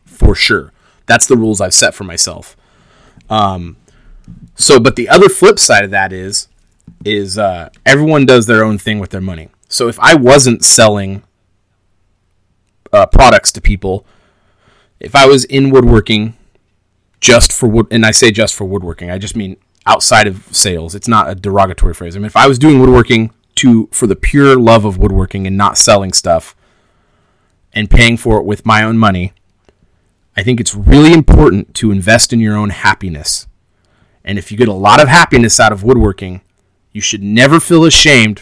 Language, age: English, 30-49